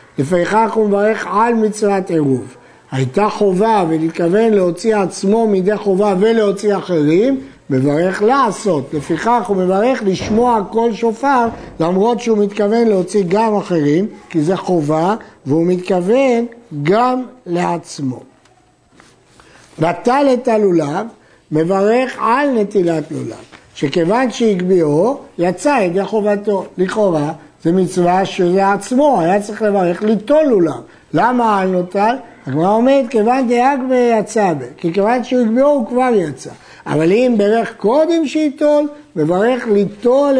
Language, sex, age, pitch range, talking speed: Hebrew, male, 60-79, 175-230 Hz, 120 wpm